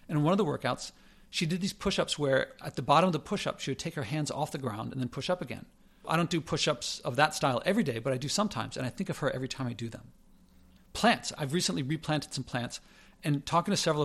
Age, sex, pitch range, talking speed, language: 40-59, male, 130-160 Hz, 270 wpm, English